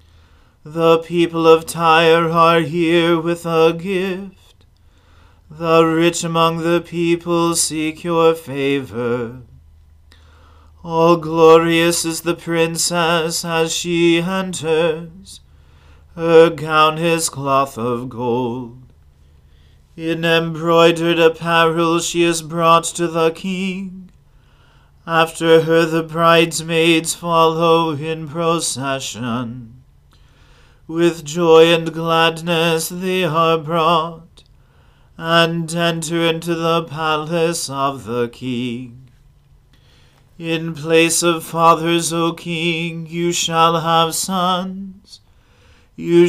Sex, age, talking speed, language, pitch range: male, 40-59, 95 wpm, English, 140-170 Hz